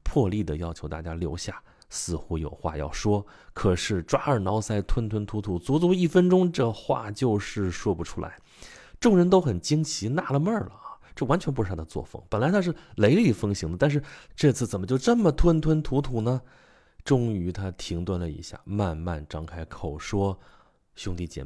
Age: 20-39